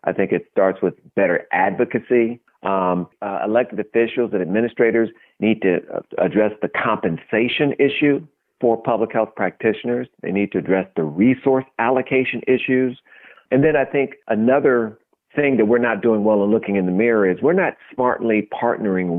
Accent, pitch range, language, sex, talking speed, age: American, 100-120 Hz, English, male, 165 wpm, 50-69